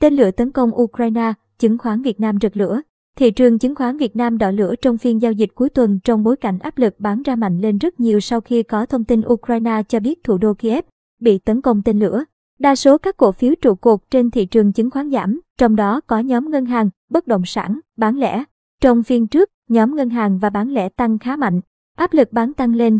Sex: male